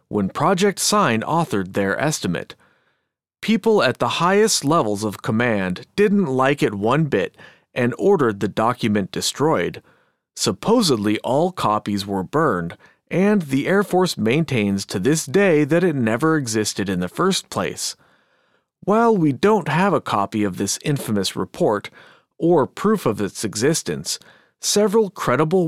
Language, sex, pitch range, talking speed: English, male, 110-180 Hz, 145 wpm